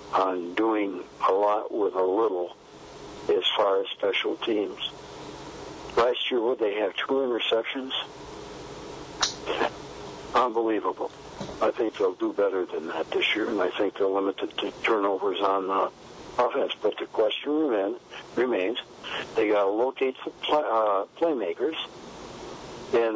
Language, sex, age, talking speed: English, male, 60-79, 135 wpm